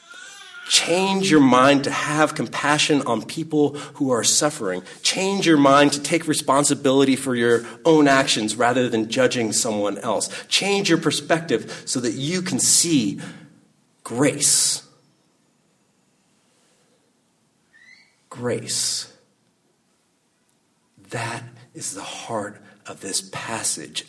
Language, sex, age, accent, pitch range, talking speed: English, male, 40-59, American, 120-170 Hz, 105 wpm